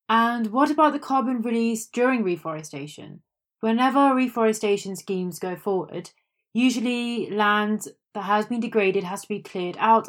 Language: English